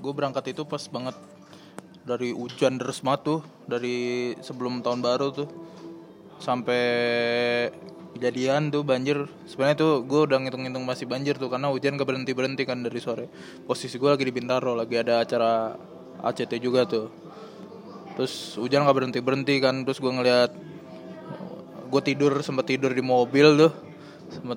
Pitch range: 120-140 Hz